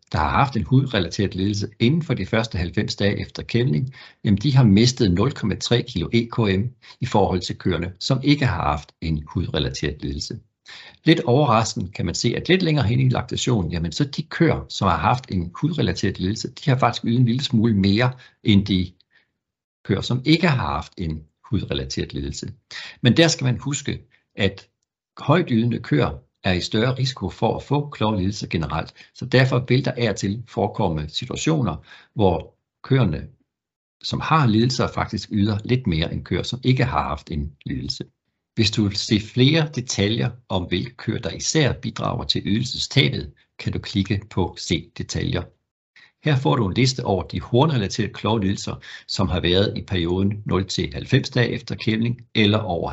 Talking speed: 180 wpm